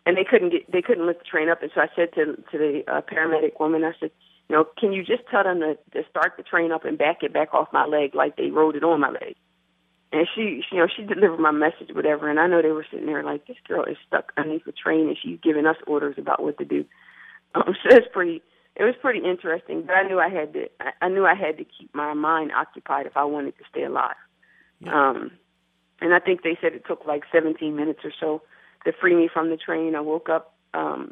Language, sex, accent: English, female, American